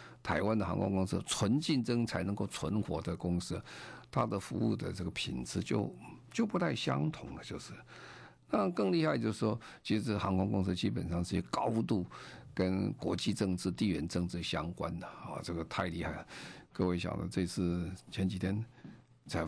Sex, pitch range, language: male, 90-115 Hz, Chinese